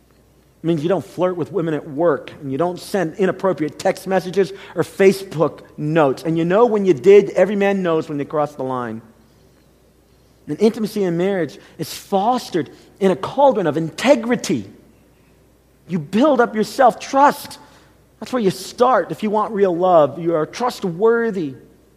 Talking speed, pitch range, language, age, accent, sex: 165 wpm, 160-195 Hz, English, 40-59, American, male